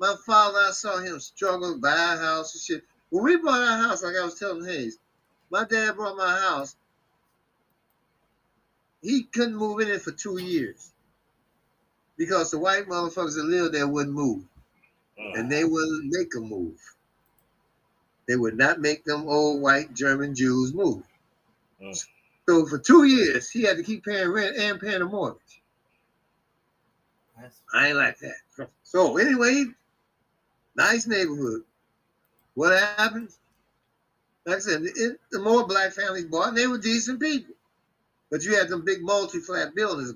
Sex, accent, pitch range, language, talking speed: male, American, 145-220 Hz, English, 155 wpm